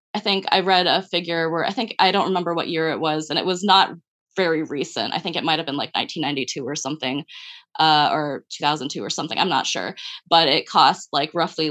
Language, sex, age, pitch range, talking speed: English, female, 20-39, 155-195 Hz, 220 wpm